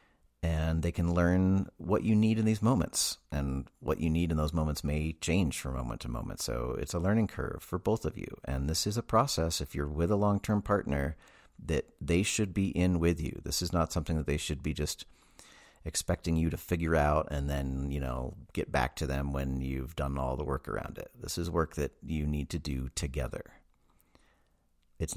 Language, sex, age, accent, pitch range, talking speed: English, male, 40-59, American, 70-85 Hz, 215 wpm